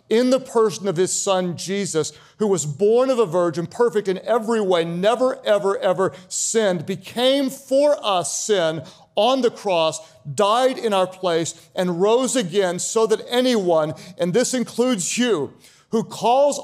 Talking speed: 160 wpm